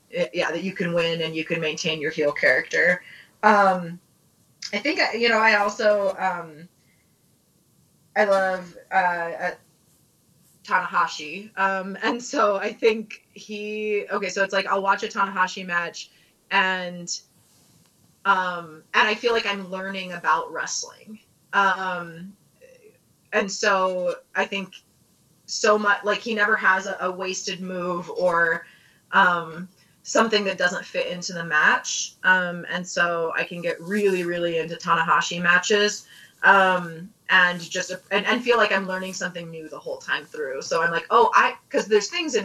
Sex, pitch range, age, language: female, 175-210 Hz, 20-39, English